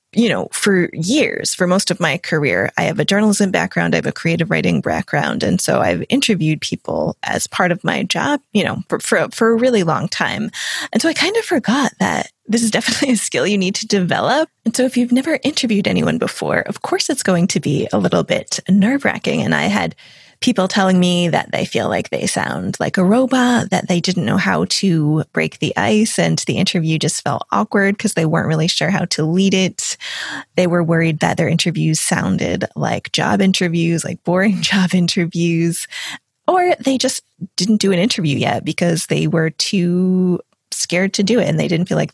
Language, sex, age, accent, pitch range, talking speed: English, female, 20-39, American, 170-225 Hz, 210 wpm